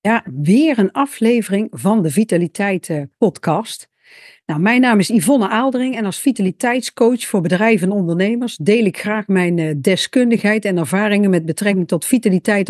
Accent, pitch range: Dutch, 185-250 Hz